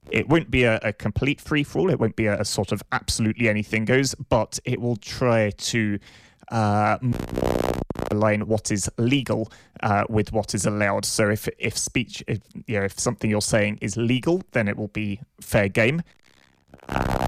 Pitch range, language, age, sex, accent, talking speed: 105-115 Hz, English, 20-39, male, British, 190 wpm